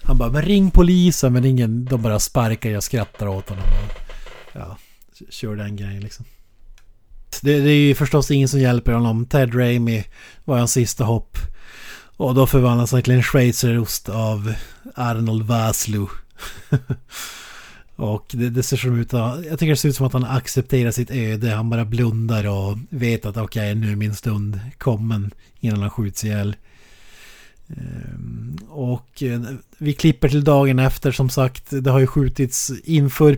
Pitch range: 110-135 Hz